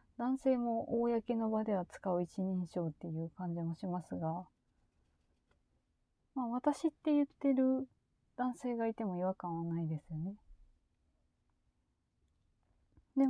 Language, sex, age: Japanese, female, 30-49